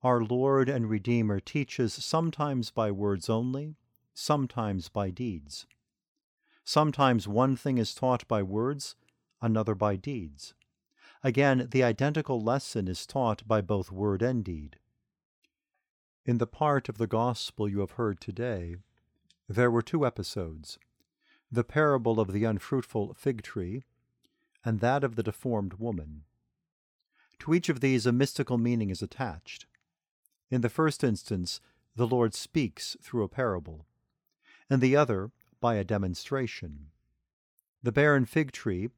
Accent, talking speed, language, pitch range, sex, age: American, 135 wpm, English, 105-135 Hz, male, 50-69